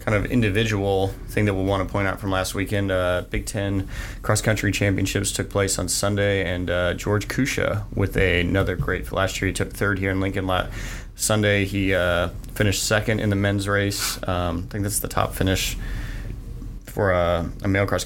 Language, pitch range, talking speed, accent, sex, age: English, 90-110 Hz, 205 wpm, American, male, 20-39